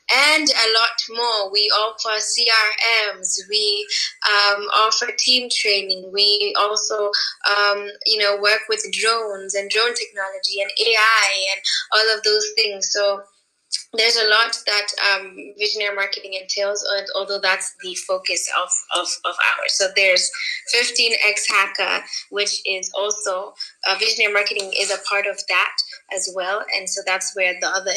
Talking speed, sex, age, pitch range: 150 wpm, female, 10-29, 195-230 Hz